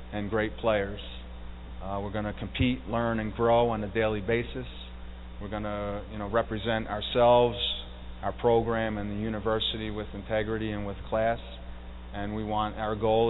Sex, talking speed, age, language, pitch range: male, 160 wpm, 30-49, English, 100-115 Hz